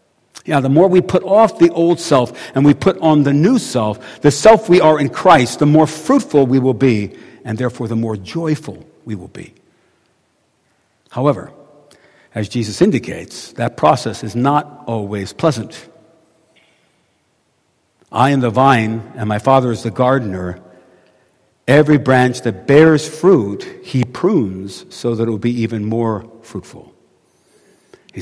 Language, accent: English, American